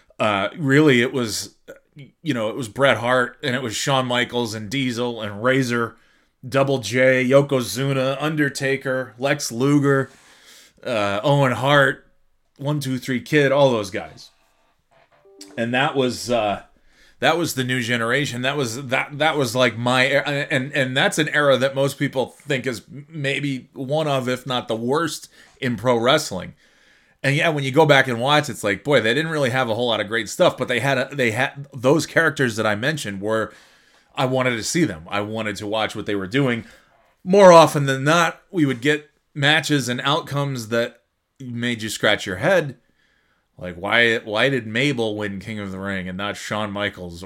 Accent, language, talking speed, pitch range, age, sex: American, English, 185 wpm, 110-140 Hz, 30-49, male